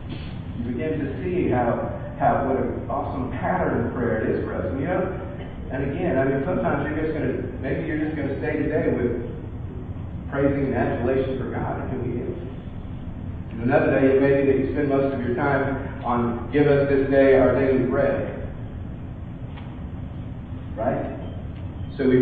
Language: English